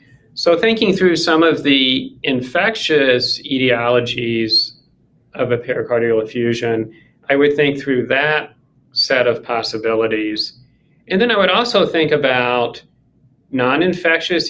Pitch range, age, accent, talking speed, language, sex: 125-155 Hz, 40-59, American, 115 wpm, English, male